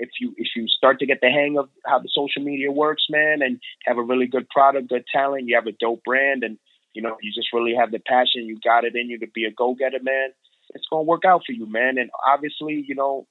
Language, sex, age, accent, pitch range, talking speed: English, male, 30-49, American, 110-135 Hz, 270 wpm